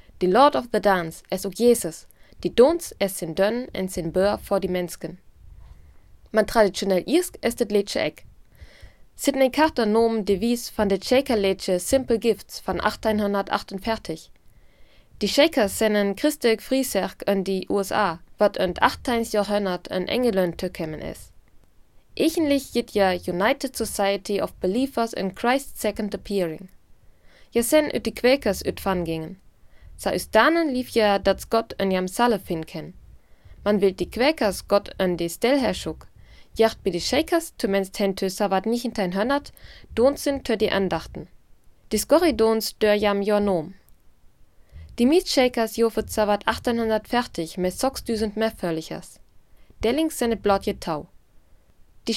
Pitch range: 185-240 Hz